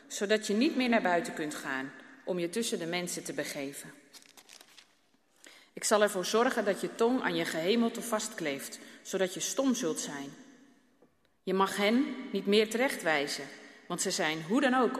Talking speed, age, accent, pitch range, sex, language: 175 wpm, 30-49, Dutch, 200-260 Hz, female, Dutch